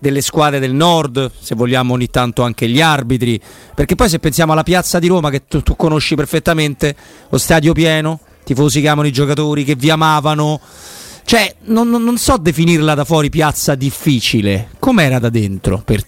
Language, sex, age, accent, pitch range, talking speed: Italian, male, 30-49, native, 95-125 Hz, 185 wpm